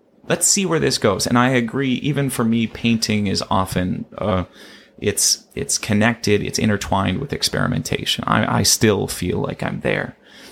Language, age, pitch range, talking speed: English, 30-49, 100-120 Hz, 165 wpm